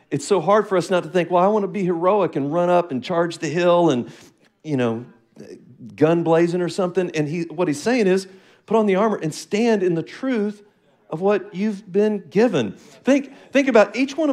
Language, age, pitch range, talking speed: English, 50-69, 175-225 Hz, 220 wpm